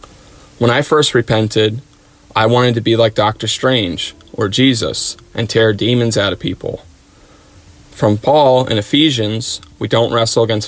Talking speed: 150 wpm